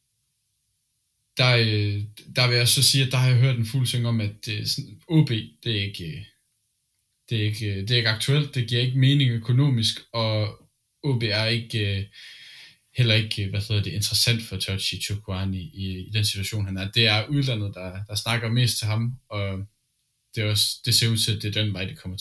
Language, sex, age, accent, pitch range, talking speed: Danish, male, 10-29, native, 105-125 Hz, 195 wpm